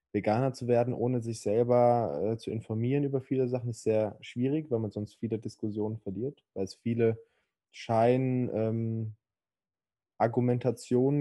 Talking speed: 135 wpm